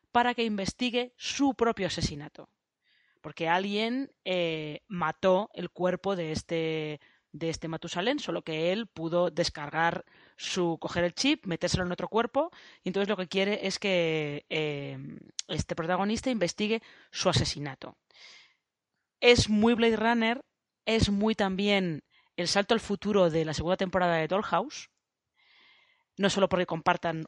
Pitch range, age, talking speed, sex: 175-235 Hz, 20-39, 140 wpm, female